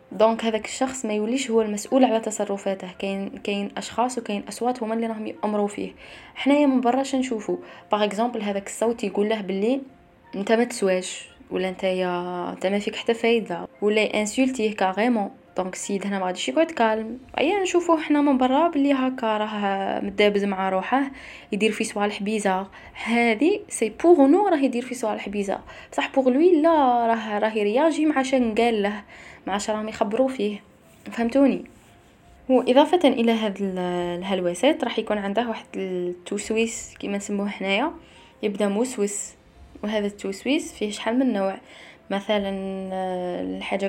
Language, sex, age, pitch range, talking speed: Arabic, female, 10-29, 190-240 Hz, 155 wpm